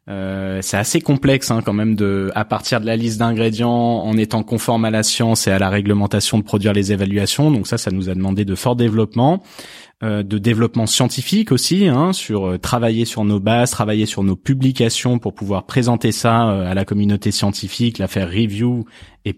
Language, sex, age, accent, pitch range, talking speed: French, male, 20-39, French, 95-115 Hz, 205 wpm